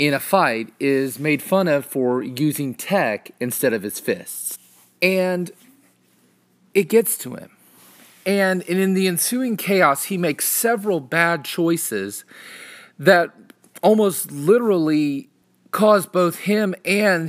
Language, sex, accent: English, male, American